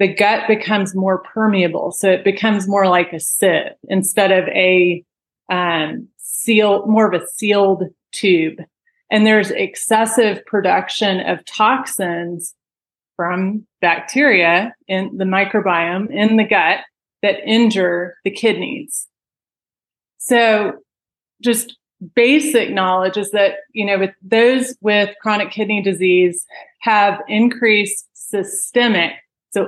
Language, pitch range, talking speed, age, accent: English, 185-220 Hz, 115 wpm, 30-49, American